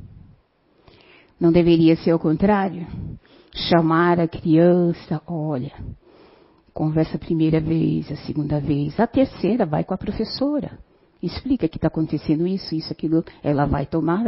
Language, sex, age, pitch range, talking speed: Portuguese, female, 50-69, 150-200 Hz, 135 wpm